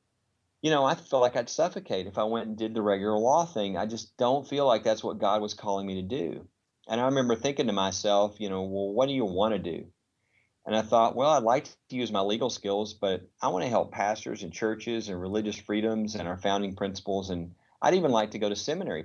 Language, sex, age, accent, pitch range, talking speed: English, male, 40-59, American, 95-115 Hz, 245 wpm